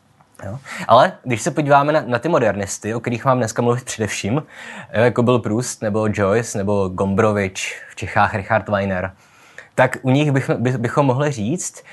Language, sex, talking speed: Czech, male, 155 wpm